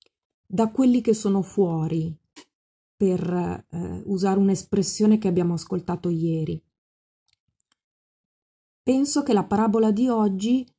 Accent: native